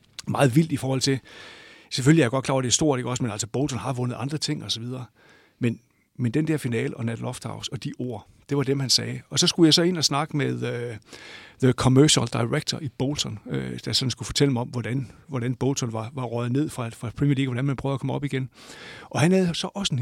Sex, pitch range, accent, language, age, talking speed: male, 125-145 Hz, native, Danish, 60-79, 265 wpm